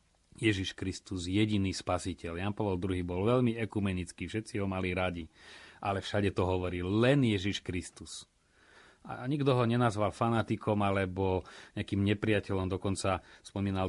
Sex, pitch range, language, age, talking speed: male, 95-110 Hz, Slovak, 30-49, 135 wpm